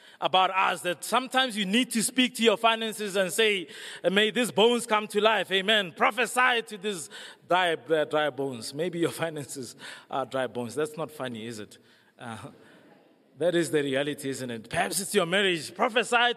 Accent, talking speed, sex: South African, 185 wpm, male